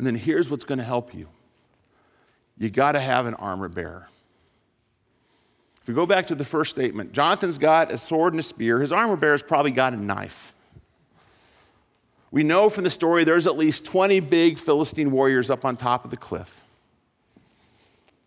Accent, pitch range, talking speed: American, 110-145 Hz, 180 wpm